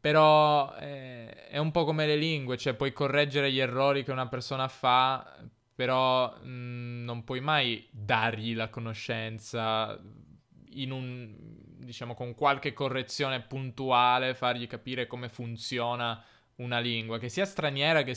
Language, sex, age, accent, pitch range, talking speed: Italian, male, 20-39, native, 115-130 Hz, 140 wpm